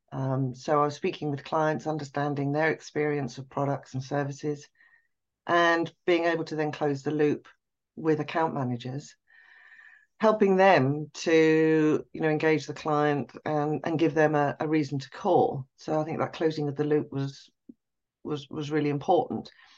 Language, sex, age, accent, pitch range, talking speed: English, female, 40-59, British, 145-165 Hz, 165 wpm